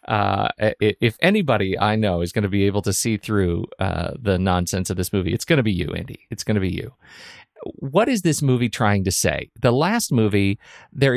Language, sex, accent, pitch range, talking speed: English, male, American, 100-125 Hz, 220 wpm